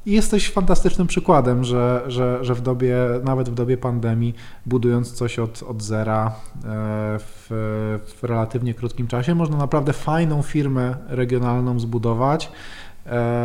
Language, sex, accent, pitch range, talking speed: Polish, male, native, 120-140 Hz, 130 wpm